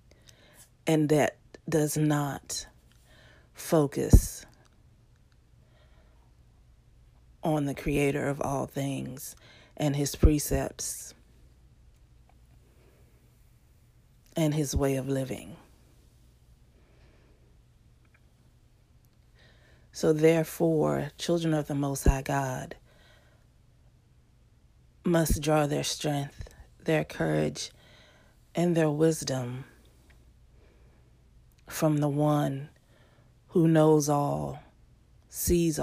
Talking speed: 70 wpm